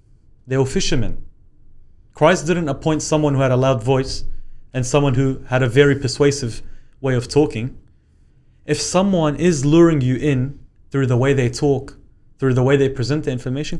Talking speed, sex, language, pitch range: 175 wpm, male, English, 100-140 Hz